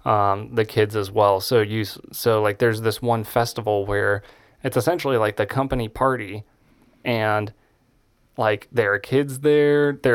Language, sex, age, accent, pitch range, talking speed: English, male, 20-39, American, 110-130 Hz, 160 wpm